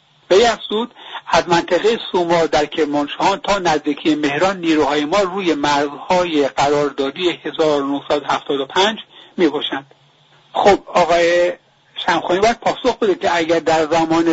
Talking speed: 110 wpm